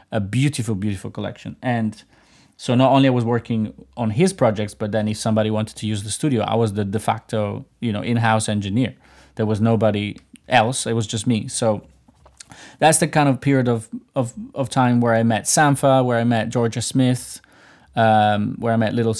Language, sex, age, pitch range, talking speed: English, male, 20-39, 110-130 Hz, 200 wpm